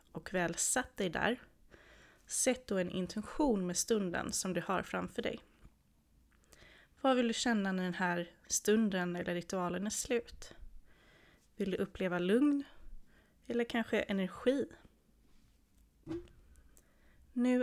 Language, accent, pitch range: Swedish, native, 170-220 Hz